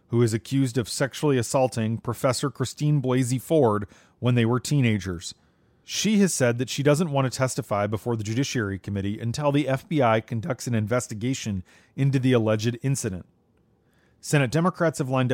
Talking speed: 160 wpm